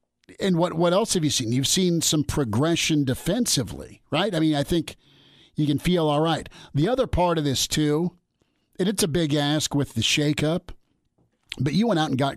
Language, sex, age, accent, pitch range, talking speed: English, male, 50-69, American, 125-160 Hz, 205 wpm